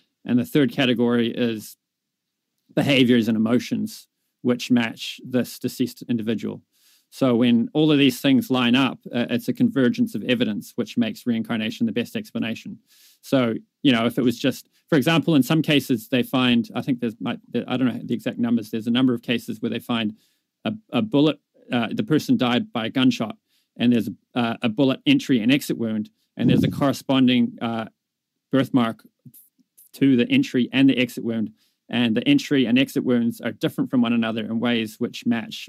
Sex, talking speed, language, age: male, 185 wpm, English, 40-59